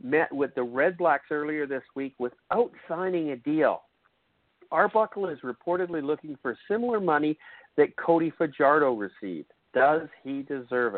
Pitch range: 130-180 Hz